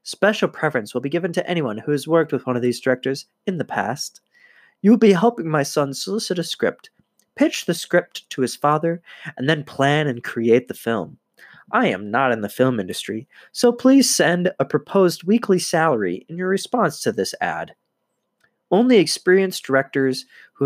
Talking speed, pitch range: 185 wpm, 120-175 Hz